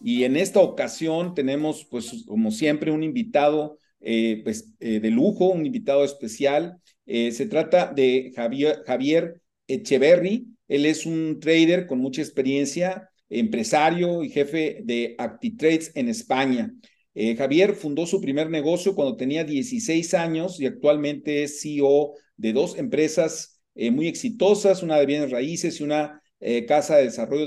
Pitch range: 140-185 Hz